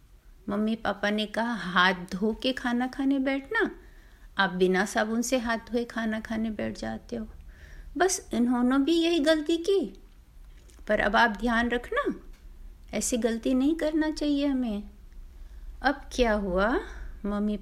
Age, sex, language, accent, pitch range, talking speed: 50-69, female, Hindi, native, 190-295 Hz, 145 wpm